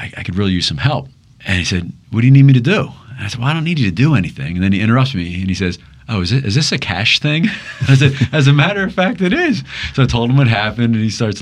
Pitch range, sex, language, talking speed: 90-120 Hz, male, English, 315 wpm